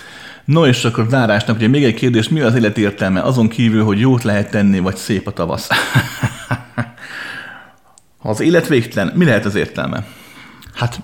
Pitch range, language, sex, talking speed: 95-120 Hz, Hungarian, male, 175 wpm